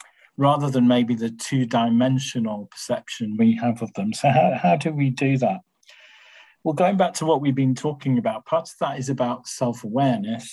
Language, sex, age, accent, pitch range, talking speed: English, male, 40-59, British, 120-155 Hz, 180 wpm